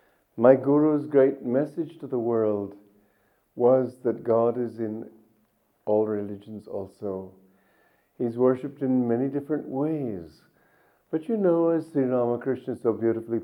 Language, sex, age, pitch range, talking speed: English, male, 60-79, 105-150 Hz, 130 wpm